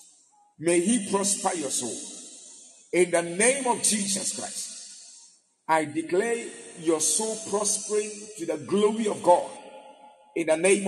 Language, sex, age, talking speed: English, male, 50-69, 130 wpm